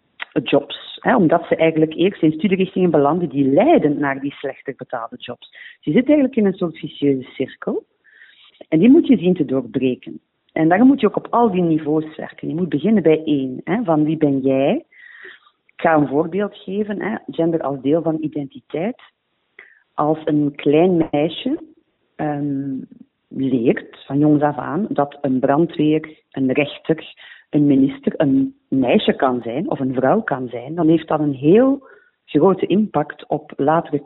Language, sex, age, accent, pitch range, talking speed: Dutch, female, 40-59, Dutch, 145-200 Hz, 165 wpm